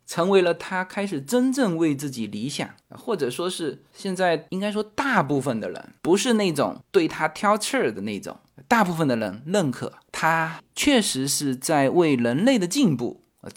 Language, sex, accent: Chinese, male, native